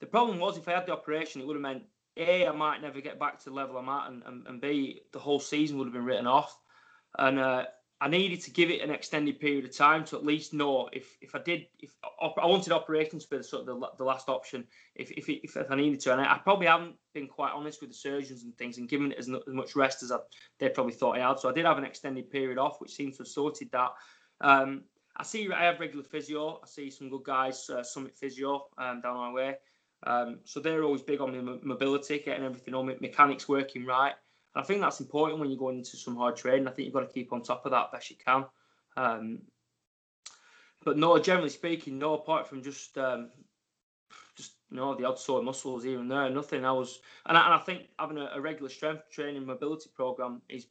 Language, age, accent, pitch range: English, 20-39, British, 130-150 Hz